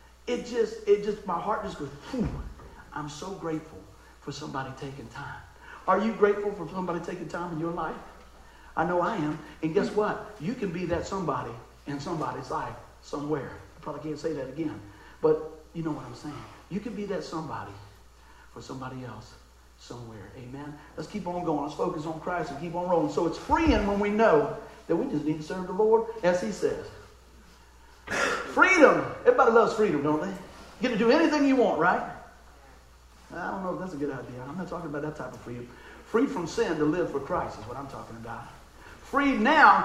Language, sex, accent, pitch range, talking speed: English, male, American, 145-210 Hz, 205 wpm